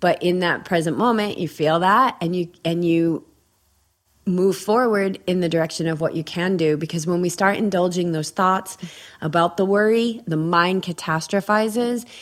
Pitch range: 155-195 Hz